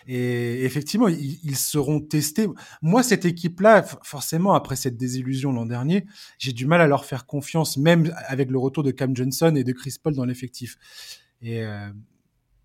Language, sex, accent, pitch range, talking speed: French, male, French, 125-155 Hz, 170 wpm